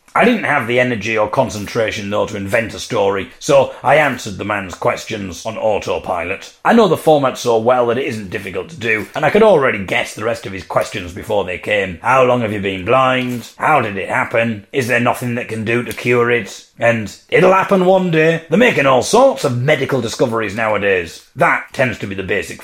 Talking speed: 220 wpm